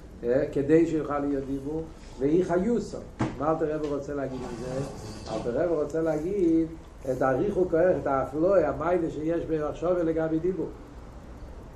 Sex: male